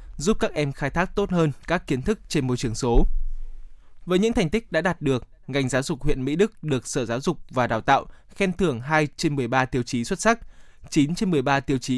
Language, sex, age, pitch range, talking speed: Vietnamese, male, 20-39, 130-165 Hz, 240 wpm